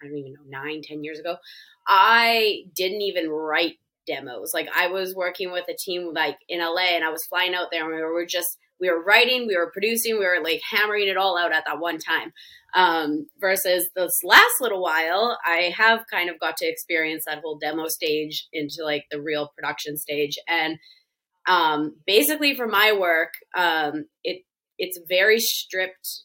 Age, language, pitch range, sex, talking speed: 20-39, English, 160-200 Hz, female, 190 wpm